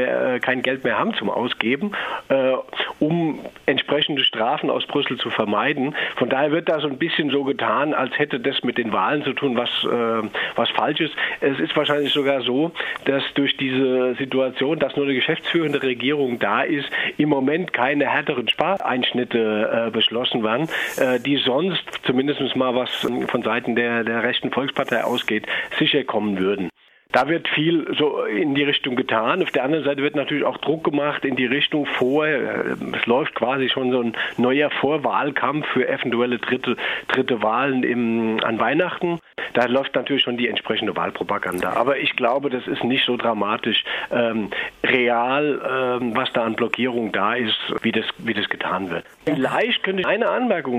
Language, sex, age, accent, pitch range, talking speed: German, male, 40-59, German, 120-145 Hz, 175 wpm